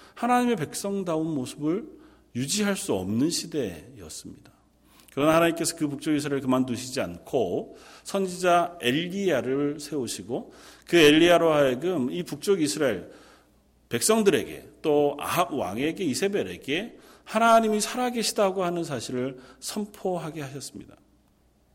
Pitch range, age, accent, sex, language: 120-175 Hz, 40-59, native, male, Korean